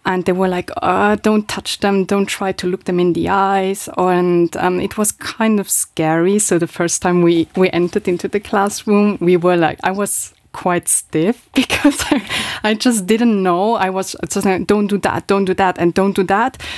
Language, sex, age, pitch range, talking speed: English, female, 20-39, 170-200 Hz, 205 wpm